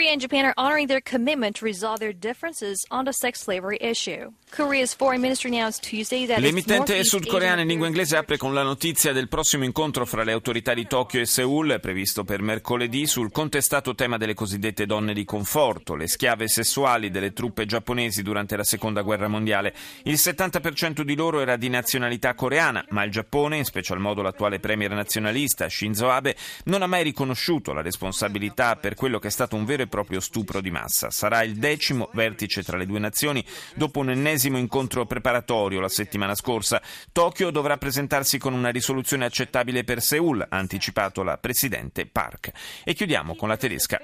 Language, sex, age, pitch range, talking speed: Italian, male, 30-49, 105-155 Hz, 155 wpm